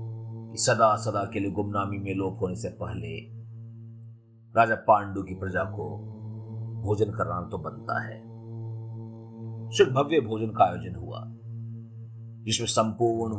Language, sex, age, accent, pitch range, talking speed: Hindi, male, 40-59, native, 105-115 Hz, 125 wpm